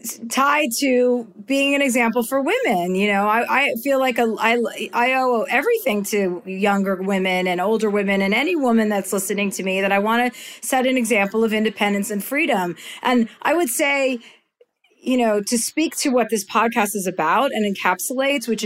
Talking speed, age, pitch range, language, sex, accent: 185 wpm, 40-59, 195-250 Hz, English, female, American